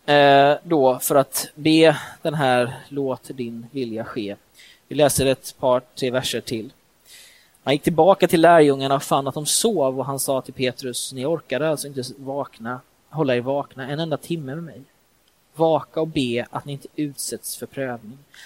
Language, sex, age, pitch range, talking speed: Swedish, male, 20-39, 130-160 Hz, 175 wpm